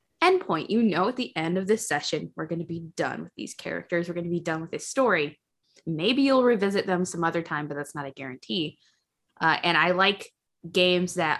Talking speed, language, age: 230 wpm, English, 20-39